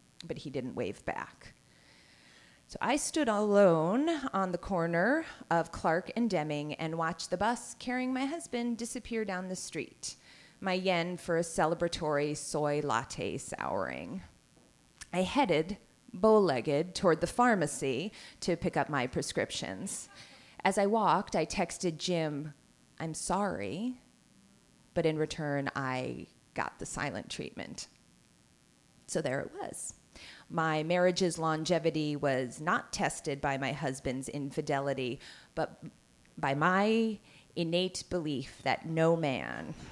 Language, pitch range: English, 150-205 Hz